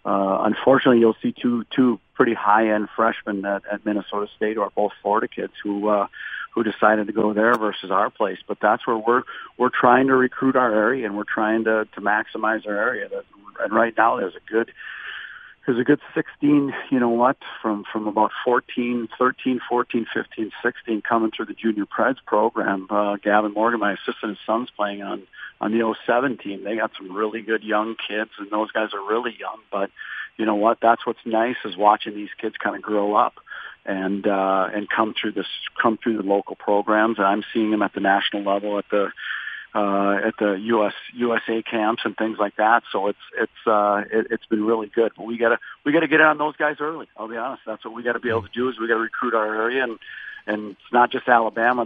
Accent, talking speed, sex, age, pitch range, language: American, 215 wpm, male, 40-59, 105-120 Hz, English